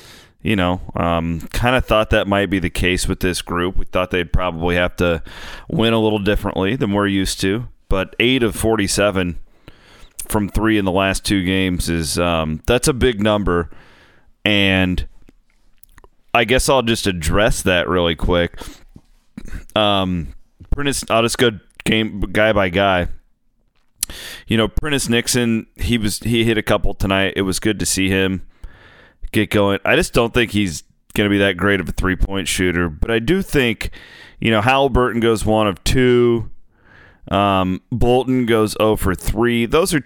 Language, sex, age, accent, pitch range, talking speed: English, male, 30-49, American, 90-110 Hz, 175 wpm